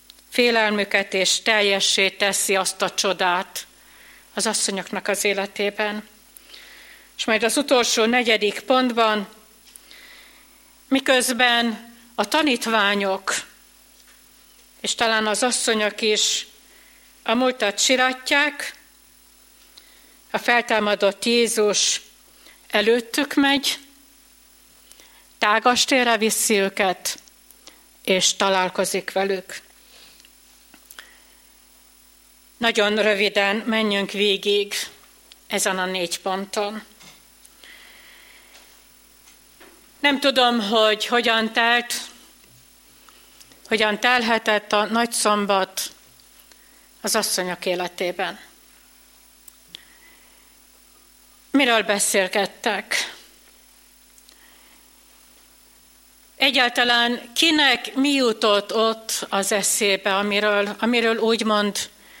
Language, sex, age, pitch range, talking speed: Hungarian, female, 60-79, 200-240 Hz, 70 wpm